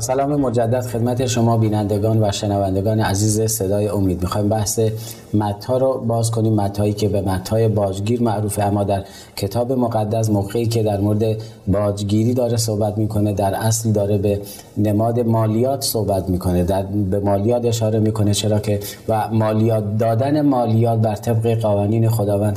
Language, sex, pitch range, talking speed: Persian, male, 105-115 Hz, 150 wpm